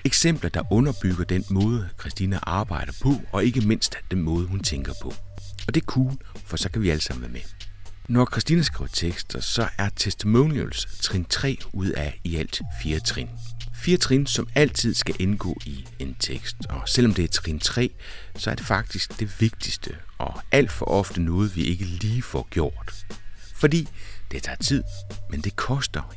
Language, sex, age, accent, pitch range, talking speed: Danish, male, 60-79, native, 85-115 Hz, 185 wpm